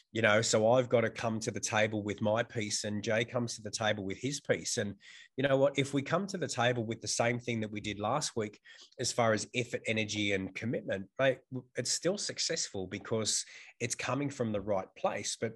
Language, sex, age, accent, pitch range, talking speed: English, male, 20-39, Australian, 105-125 Hz, 230 wpm